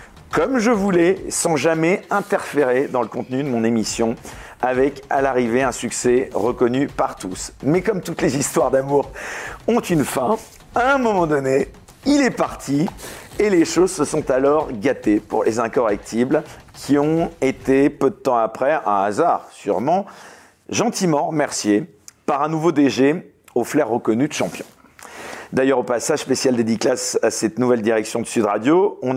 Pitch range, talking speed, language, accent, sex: 120-165 Hz, 165 wpm, French, French, male